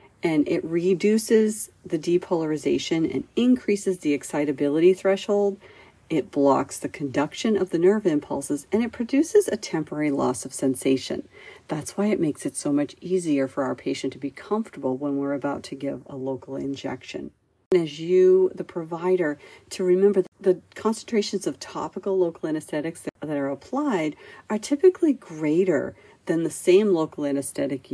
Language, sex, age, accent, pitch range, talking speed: English, female, 50-69, American, 145-210 Hz, 155 wpm